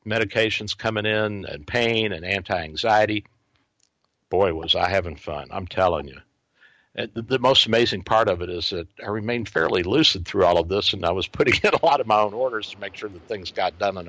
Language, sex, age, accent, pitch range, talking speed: English, male, 60-79, American, 95-115 Hz, 215 wpm